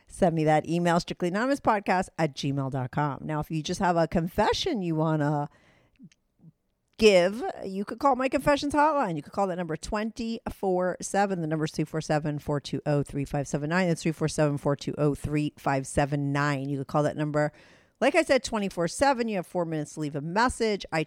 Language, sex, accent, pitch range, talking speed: English, female, American, 145-185 Hz, 165 wpm